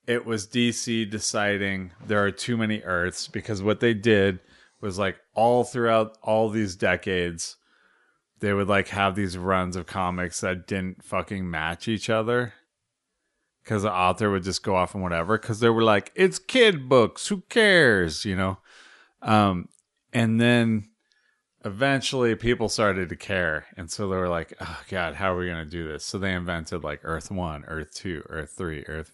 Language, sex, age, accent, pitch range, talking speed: English, male, 30-49, American, 90-110 Hz, 180 wpm